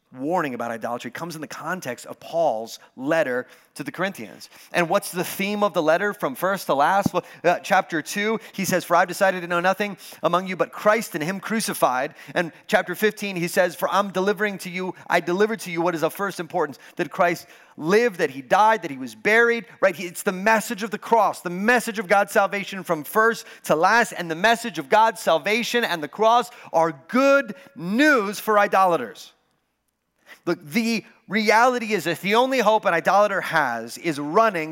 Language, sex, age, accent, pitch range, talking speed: English, male, 30-49, American, 175-230 Hz, 200 wpm